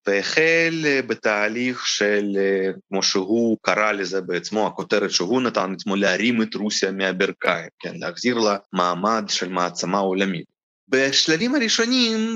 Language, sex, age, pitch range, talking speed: Hebrew, male, 30-49, 105-170 Hz, 120 wpm